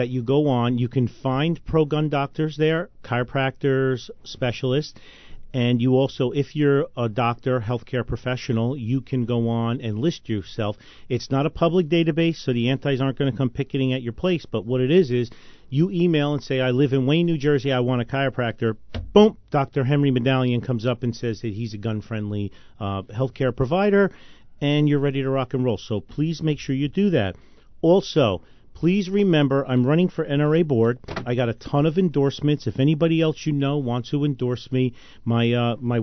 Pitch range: 125-155 Hz